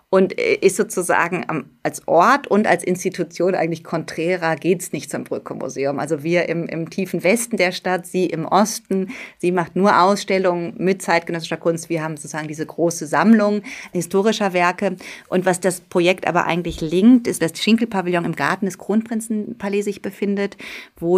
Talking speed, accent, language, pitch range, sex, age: 170 wpm, German, German, 160-190 Hz, female, 30-49